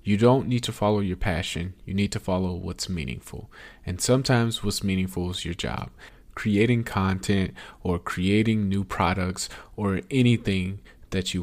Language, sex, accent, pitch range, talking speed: English, male, American, 90-110 Hz, 160 wpm